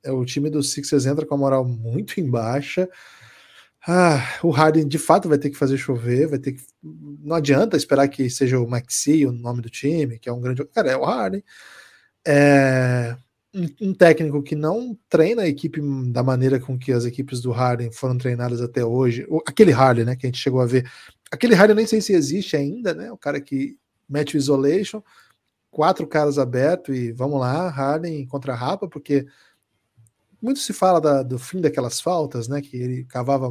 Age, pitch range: 20-39, 130-170 Hz